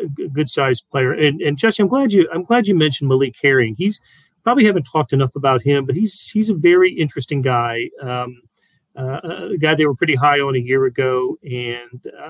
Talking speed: 210 wpm